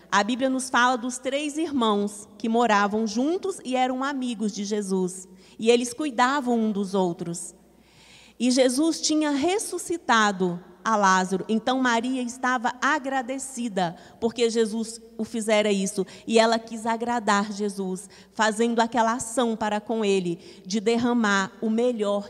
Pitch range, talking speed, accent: 200-245 Hz, 135 wpm, Brazilian